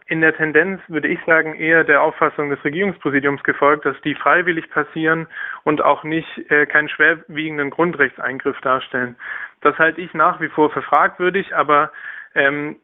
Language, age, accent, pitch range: German, 20-39, German, 145-160 Hz